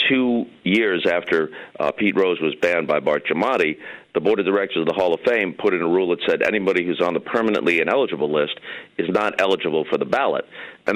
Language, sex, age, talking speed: English, male, 50-69, 220 wpm